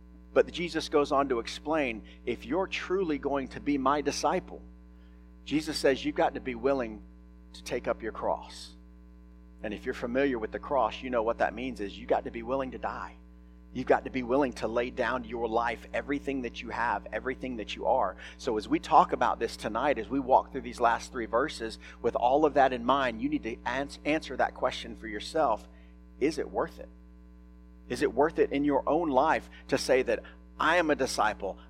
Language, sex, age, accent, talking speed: English, male, 40-59, American, 210 wpm